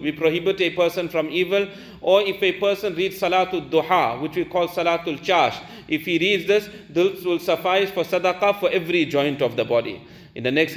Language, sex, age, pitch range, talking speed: English, male, 40-59, 170-195 Hz, 200 wpm